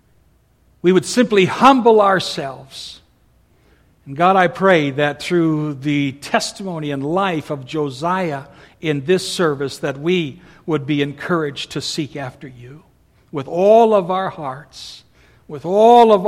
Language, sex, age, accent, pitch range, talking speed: English, male, 60-79, American, 145-190 Hz, 135 wpm